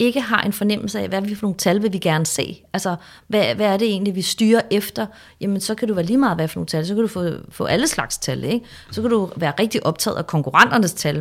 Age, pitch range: 30-49, 185-230 Hz